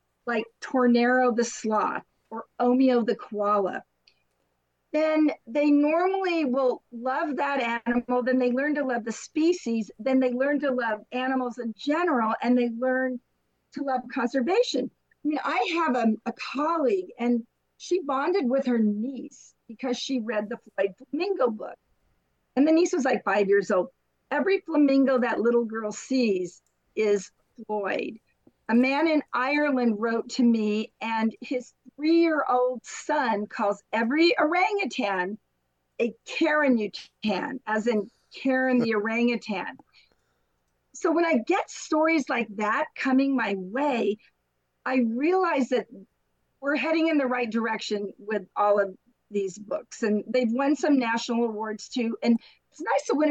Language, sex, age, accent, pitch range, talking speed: English, female, 50-69, American, 220-285 Hz, 145 wpm